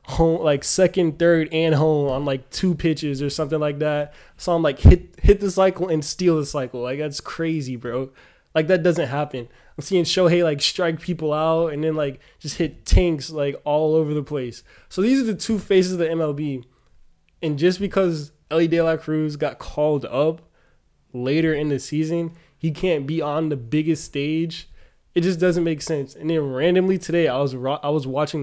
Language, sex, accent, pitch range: English, male, American, 140-165 Hz